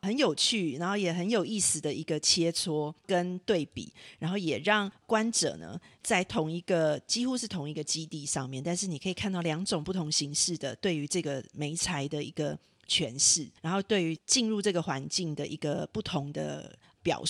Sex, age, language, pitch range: female, 40-59, Chinese, 155-205 Hz